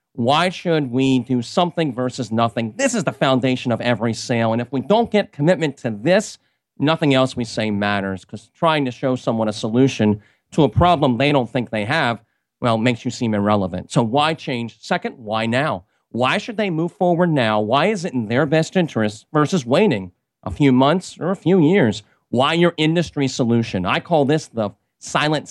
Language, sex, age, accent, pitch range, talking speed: English, male, 40-59, American, 115-160 Hz, 200 wpm